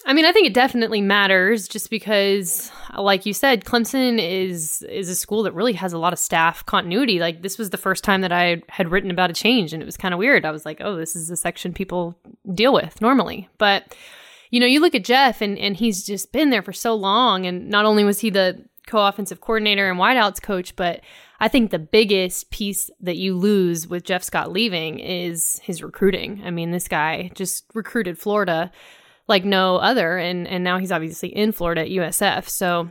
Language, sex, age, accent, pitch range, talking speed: English, female, 20-39, American, 185-230 Hz, 220 wpm